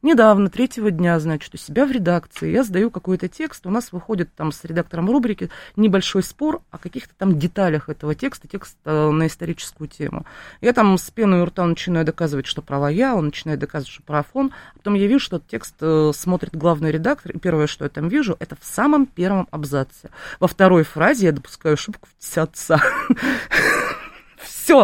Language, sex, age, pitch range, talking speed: Russian, female, 30-49, 150-210 Hz, 185 wpm